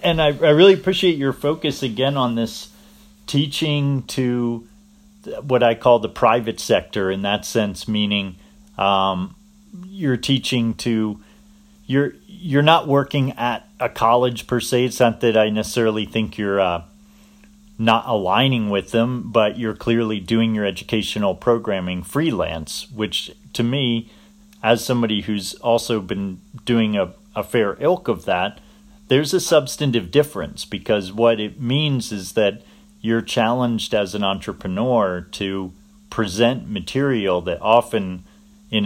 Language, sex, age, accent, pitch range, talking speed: English, male, 40-59, American, 105-140 Hz, 140 wpm